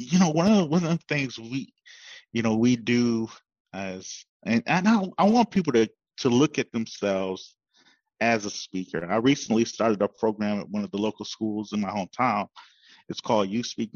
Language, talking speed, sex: English, 200 wpm, male